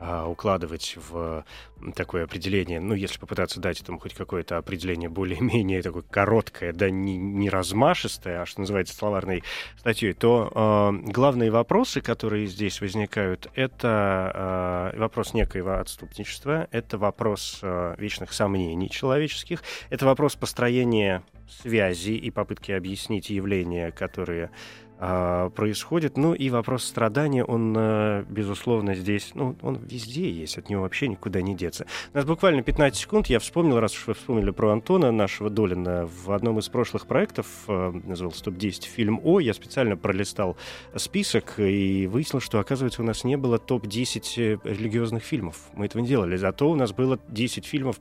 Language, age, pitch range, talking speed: Russian, 20-39, 95-120 Hz, 145 wpm